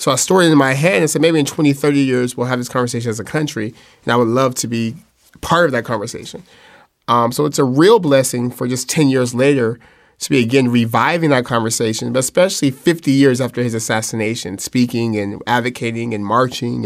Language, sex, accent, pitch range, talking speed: English, male, American, 120-135 Hz, 215 wpm